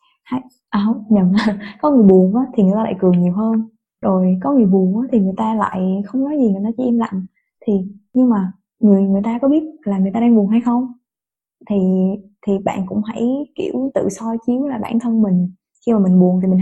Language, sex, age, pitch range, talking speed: Vietnamese, female, 20-39, 195-245 Hz, 230 wpm